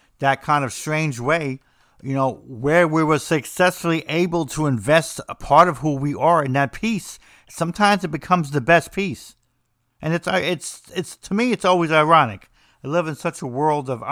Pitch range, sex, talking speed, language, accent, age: 120-165 Hz, male, 190 wpm, English, American, 50-69